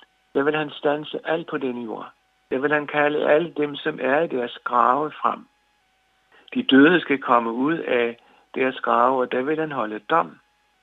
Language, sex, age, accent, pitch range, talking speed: Danish, male, 60-79, native, 125-160 Hz, 190 wpm